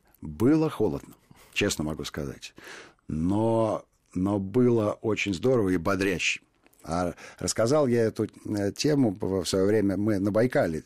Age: 50-69